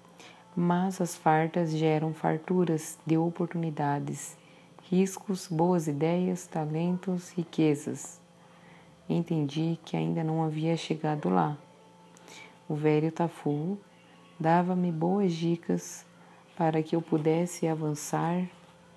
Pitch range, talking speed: 155-180 Hz, 95 wpm